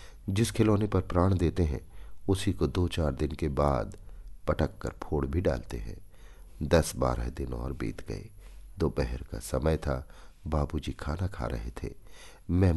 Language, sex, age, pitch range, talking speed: Hindi, male, 50-69, 75-100 Hz, 165 wpm